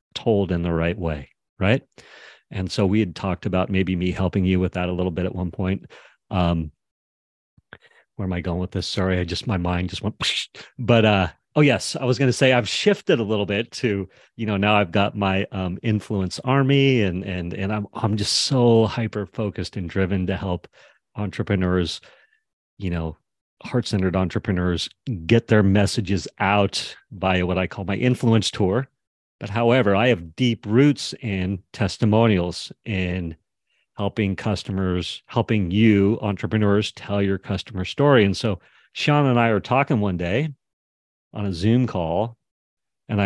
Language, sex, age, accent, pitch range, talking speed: English, male, 40-59, American, 90-110 Hz, 170 wpm